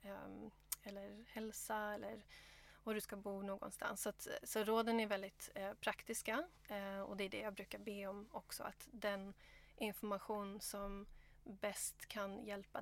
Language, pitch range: English, 200-220 Hz